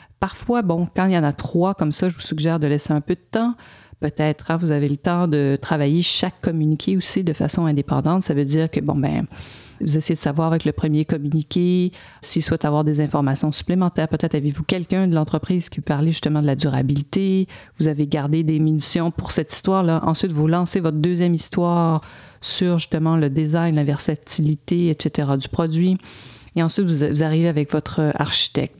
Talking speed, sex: 200 wpm, female